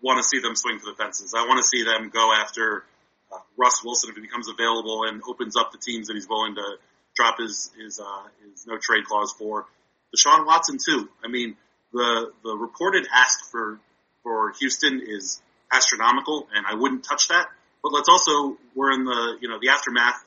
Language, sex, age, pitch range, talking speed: English, male, 30-49, 115-175 Hz, 205 wpm